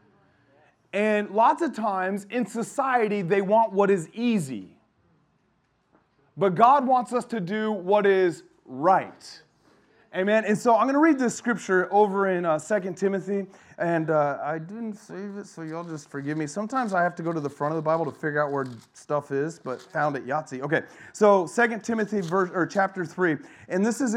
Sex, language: male, English